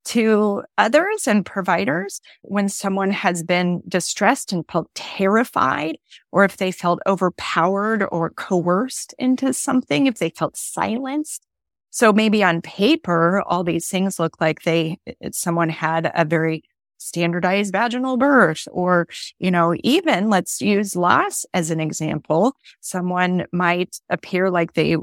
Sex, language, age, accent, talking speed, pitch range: female, English, 30-49, American, 135 wpm, 170-210 Hz